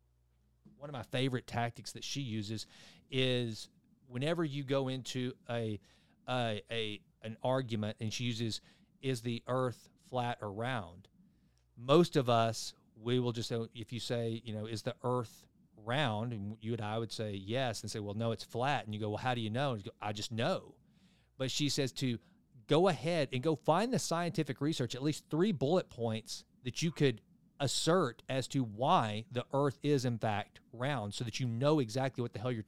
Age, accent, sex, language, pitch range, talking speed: 40-59, American, male, English, 115-145 Hz, 200 wpm